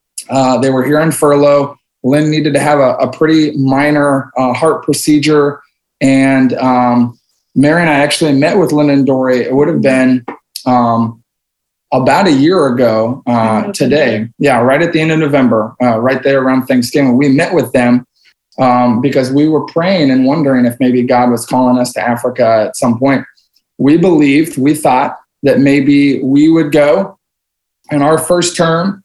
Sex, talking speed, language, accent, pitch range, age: male, 180 wpm, English, American, 130-150 Hz, 20-39